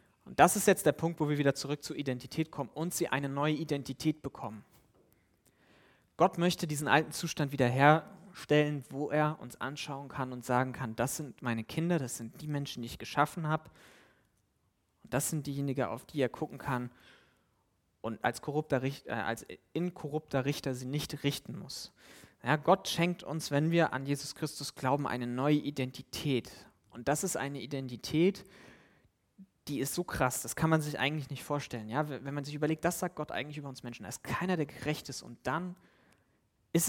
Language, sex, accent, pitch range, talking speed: German, male, German, 125-155 Hz, 190 wpm